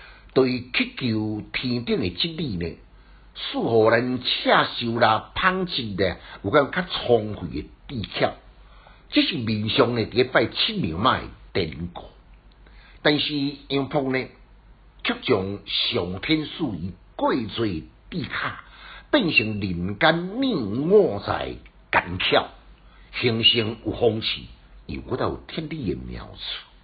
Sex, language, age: male, Chinese, 60-79